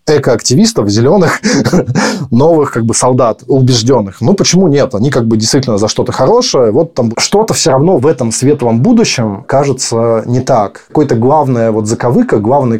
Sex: male